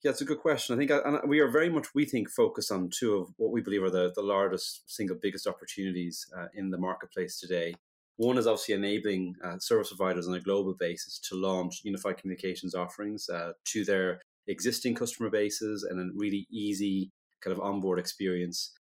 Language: English